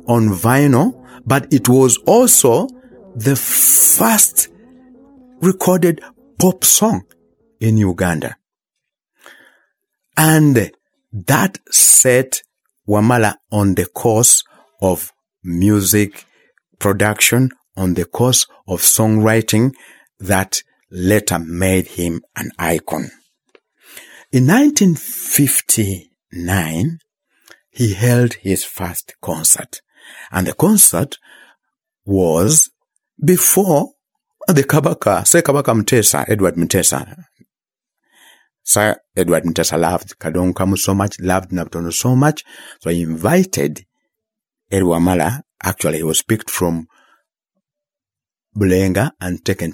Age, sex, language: 60-79, male, English